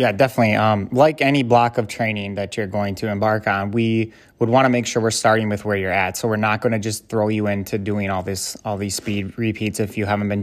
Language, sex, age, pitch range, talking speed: English, male, 20-39, 105-120 Hz, 265 wpm